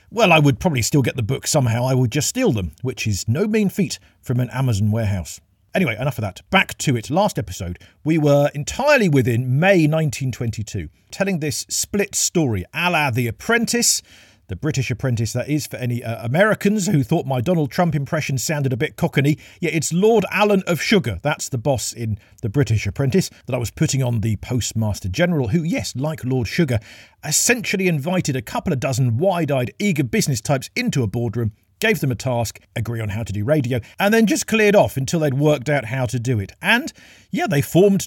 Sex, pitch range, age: male, 115-170 Hz, 50-69